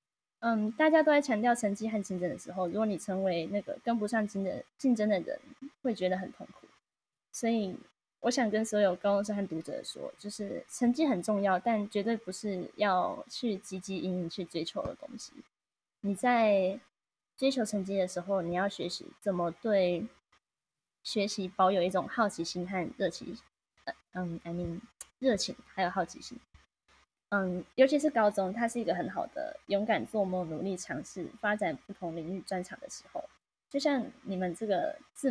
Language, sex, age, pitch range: Chinese, female, 10-29, 185-235 Hz